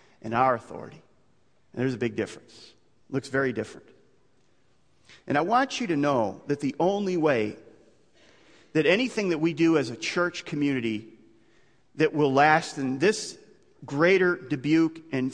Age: 40-59